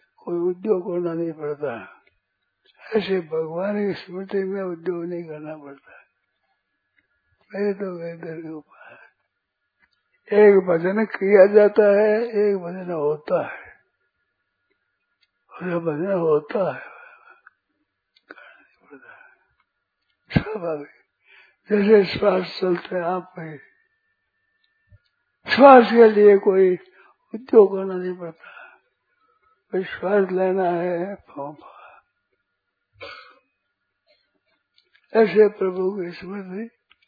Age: 60-79